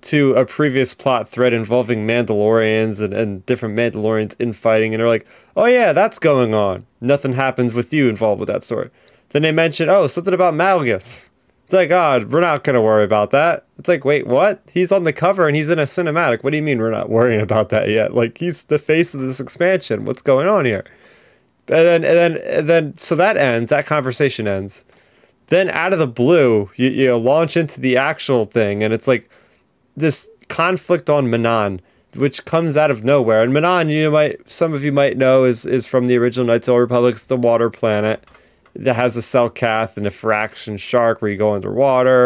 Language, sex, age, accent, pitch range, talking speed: English, male, 20-39, American, 115-150 Hz, 210 wpm